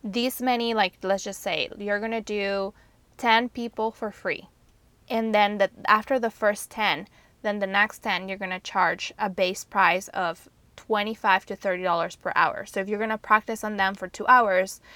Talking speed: 195 wpm